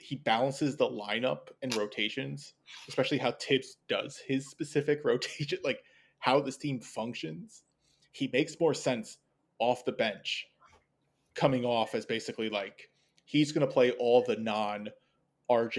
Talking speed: 145 wpm